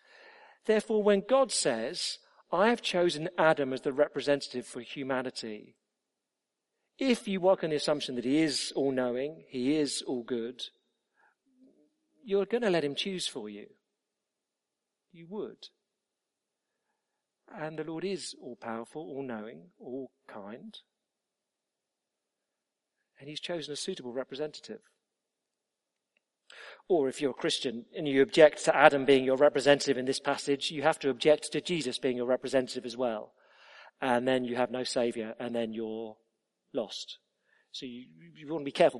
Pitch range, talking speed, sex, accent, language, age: 130-170 Hz, 150 wpm, male, British, English, 50-69